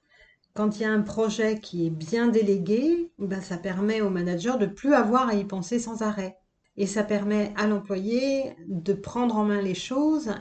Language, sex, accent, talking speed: French, female, French, 200 wpm